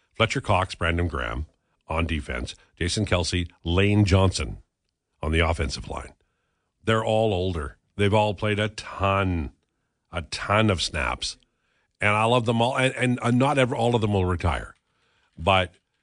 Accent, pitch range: American, 85-110 Hz